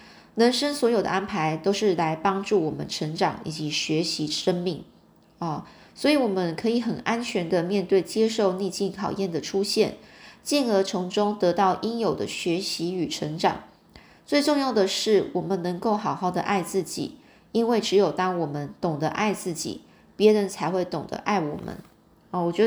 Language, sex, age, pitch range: Chinese, female, 20-39, 170-210 Hz